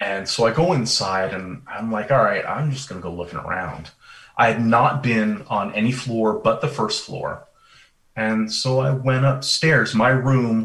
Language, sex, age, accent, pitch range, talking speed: English, male, 30-49, American, 100-130 Hz, 195 wpm